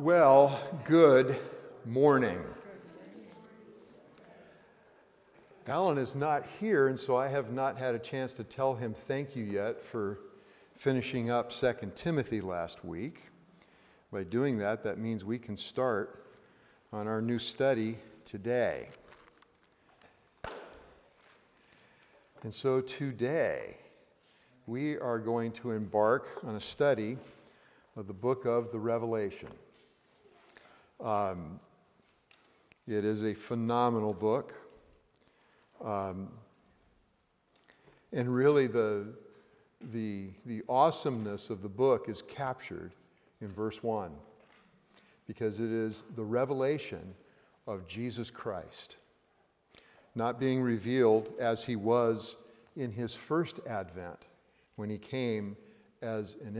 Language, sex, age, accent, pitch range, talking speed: English, male, 50-69, American, 110-130 Hz, 110 wpm